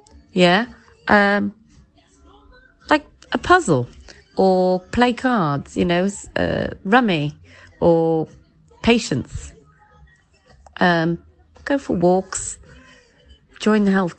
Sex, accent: female, British